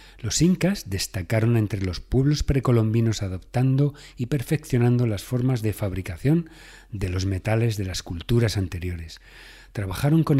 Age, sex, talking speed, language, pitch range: 40-59, male, 135 wpm, Spanish, 95-130 Hz